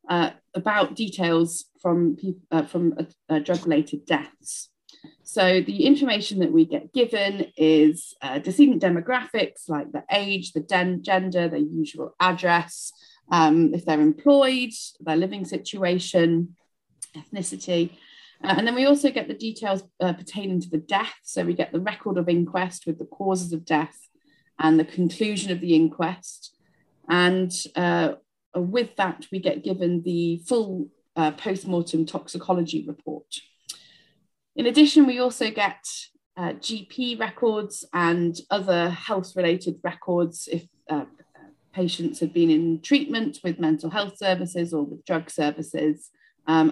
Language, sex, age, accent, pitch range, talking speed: English, female, 30-49, British, 160-205 Hz, 140 wpm